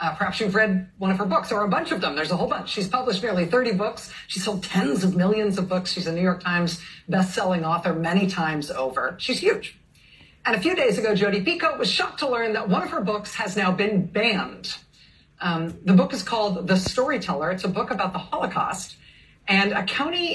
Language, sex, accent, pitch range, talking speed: English, female, American, 170-215 Hz, 225 wpm